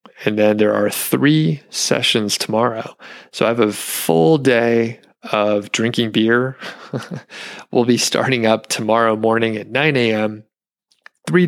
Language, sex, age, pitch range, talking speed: English, male, 30-49, 105-120 Hz, 140 wpm